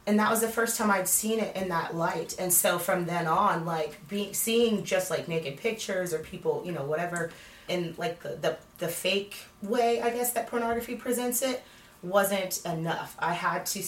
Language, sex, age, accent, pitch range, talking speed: English, female, 30-49, American, 155-205 Hz, 200 wpm